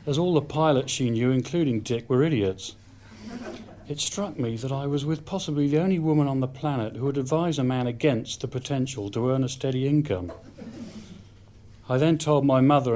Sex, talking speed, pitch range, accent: male, 195 wpm, 105-145 Hz, British